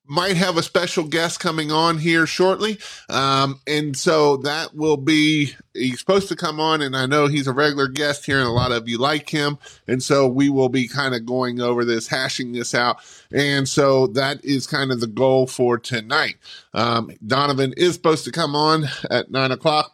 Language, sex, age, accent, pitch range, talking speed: English, male, 30-49, American, 115-155 Hz, 205 wpm